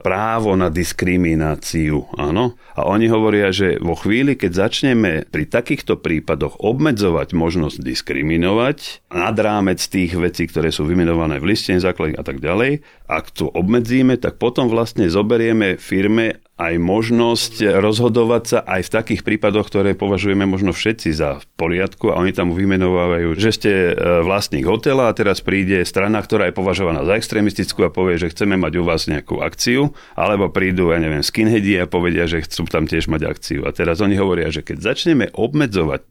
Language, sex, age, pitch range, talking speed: Slovak, male, 40-59, 85-105 Hz, 170 wpm